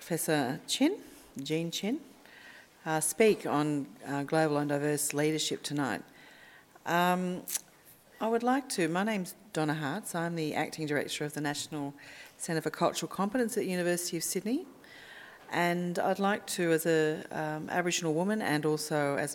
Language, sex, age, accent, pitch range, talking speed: English, female, 40-59, Australian, 145-170 Hz, 150 wpm